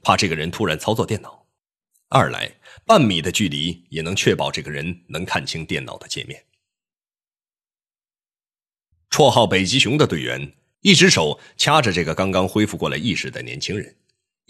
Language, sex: Chinese, male